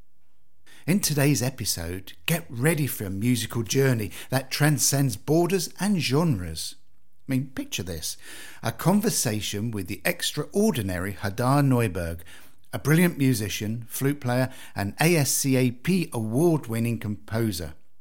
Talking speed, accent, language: 115 wpm, British, English